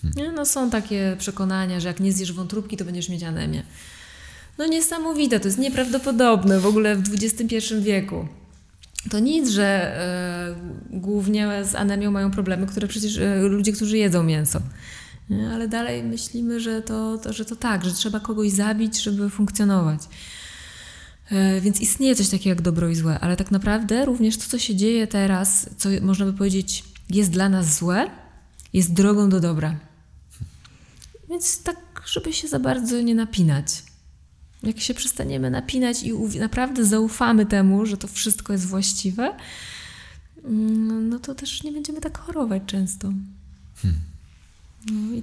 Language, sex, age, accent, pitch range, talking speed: Polish, female, 20-39, native, 180-225 Hz, 145 wpm